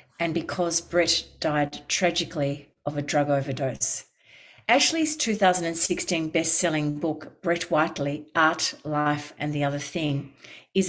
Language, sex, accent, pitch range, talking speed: English, female, Australian, 150-185 Hz, 125 wpm